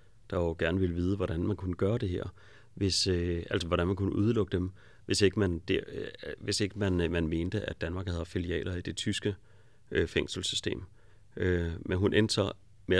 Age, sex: 30-49, male